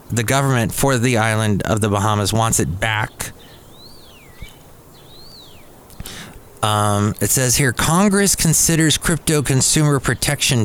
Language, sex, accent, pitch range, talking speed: English, male, American, 110-155 Hz, 115 wpm